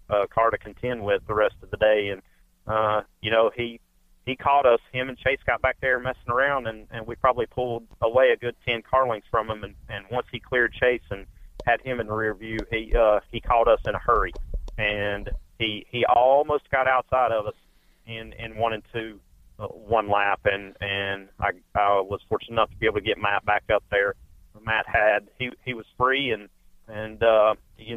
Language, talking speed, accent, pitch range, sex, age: English, 220 wpm, American, 105-120 Hz, male, 40-59